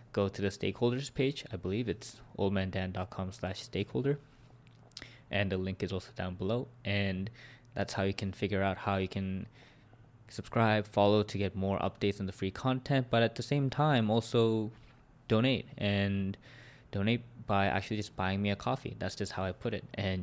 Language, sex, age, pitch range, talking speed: English, male, 20-39, 100-120 Hz, 180 wpm